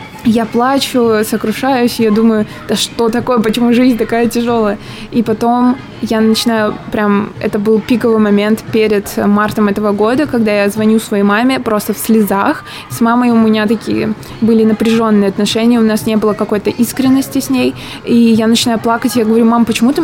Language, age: Russian, 20-39